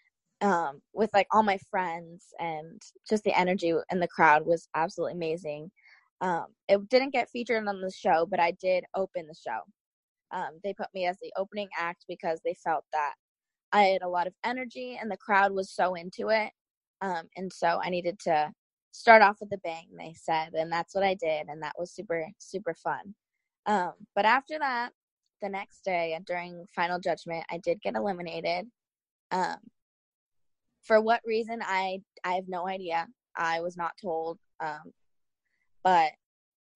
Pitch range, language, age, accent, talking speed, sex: 170-205 Hz, English, 10-29, American, 175 wpm, female